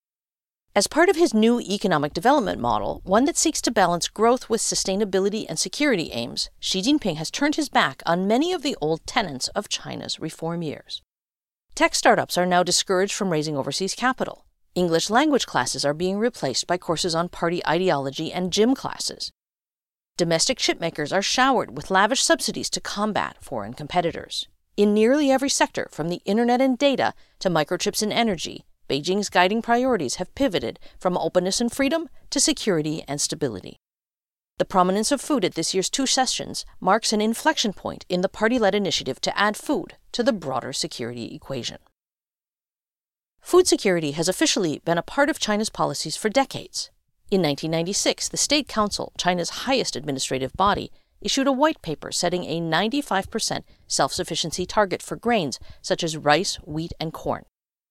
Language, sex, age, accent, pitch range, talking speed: English, female, 50-69, American, 165-245 Hz, 165 wpm